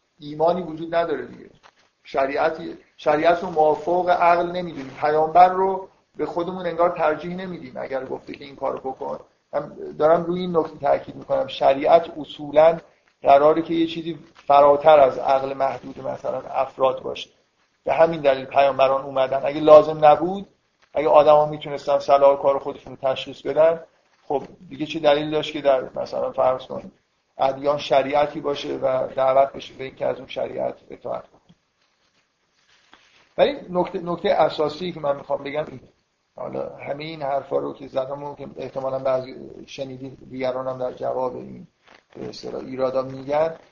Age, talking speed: 50-69, 145 wpm